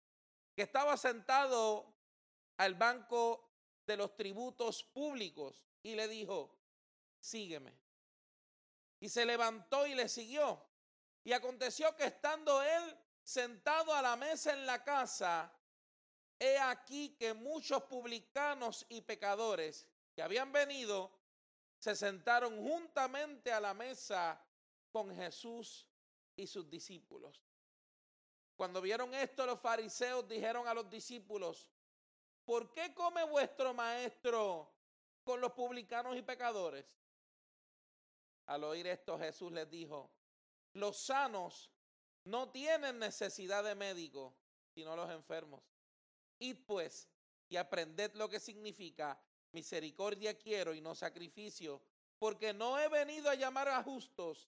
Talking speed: 120 wpm